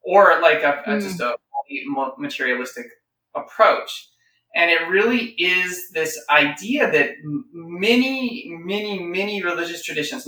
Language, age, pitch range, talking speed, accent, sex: English, 30-49, 150-200 Hz, 115 wpm, American, male